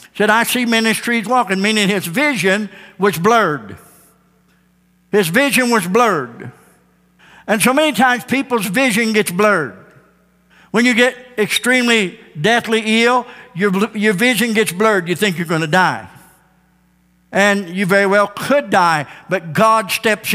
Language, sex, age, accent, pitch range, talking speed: English, male, 60-79, American, 180-225 Hz, 140 wpm